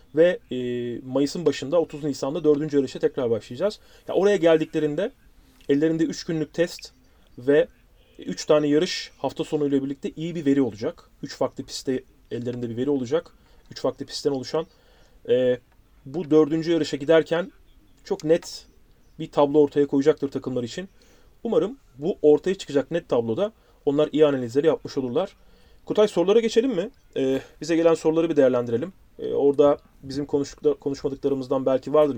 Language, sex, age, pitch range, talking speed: Turkish, male, 30-49, 135-165 Hz, 145 wpm